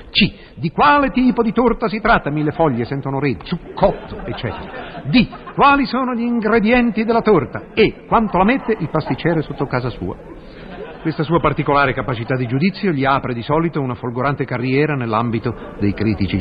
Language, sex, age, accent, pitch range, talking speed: Italian, male, 50-69, native, 125-180 Hz, 170 wpm